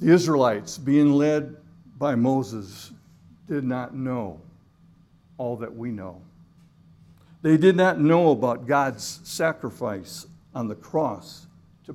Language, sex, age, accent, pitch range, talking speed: English, male, 60-79, American, 110-165 Hz, 120 wpm